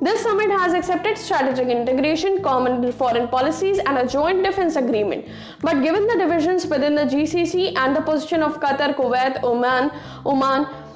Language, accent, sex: English, Indian, female